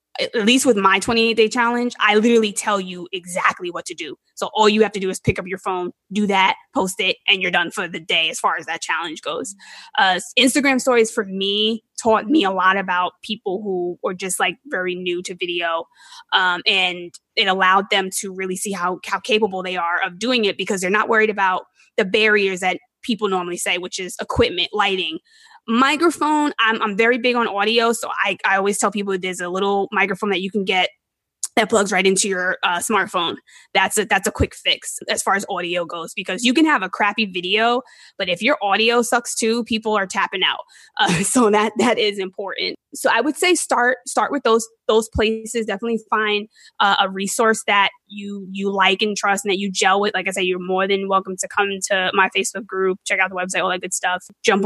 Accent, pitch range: American, 190-225 Hz